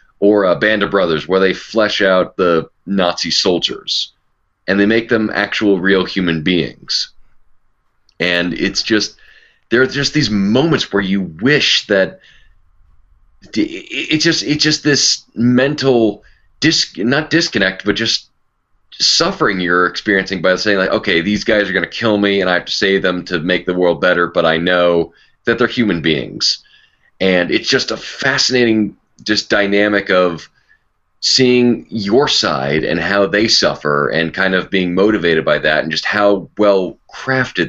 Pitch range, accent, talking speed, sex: 90-105 Hz, American, 160 wpm, male